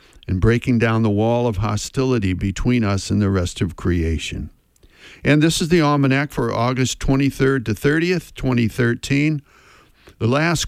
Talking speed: 150 wpm